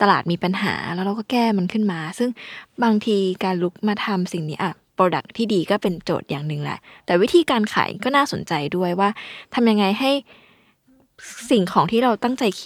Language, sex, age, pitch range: Thai, female, 20-39, 180-230 Hz